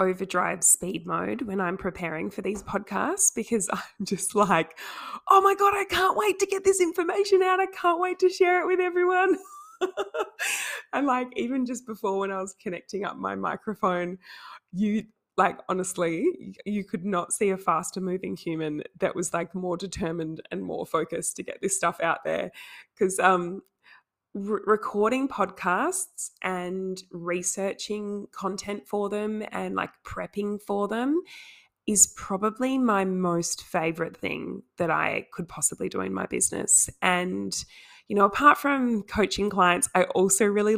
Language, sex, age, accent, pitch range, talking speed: English, female, 20-39, Australian, 180-245 Hz, 155 wpm